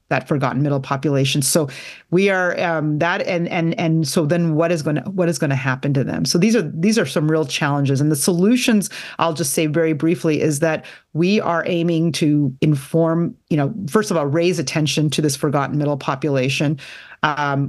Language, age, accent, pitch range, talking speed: English, 30-49, American, 145-165 Hz, 205 wpm